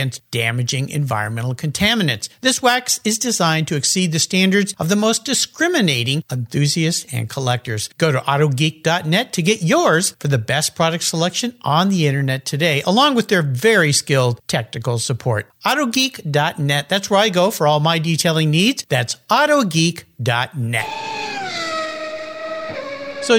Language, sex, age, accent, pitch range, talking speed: English, male, 50-69, American, 145-205 Hz, 135 wpm